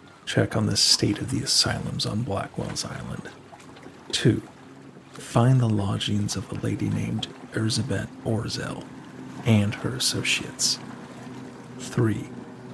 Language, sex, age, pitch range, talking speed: English, male, 40-59, 95-120 Hz, 115 wpm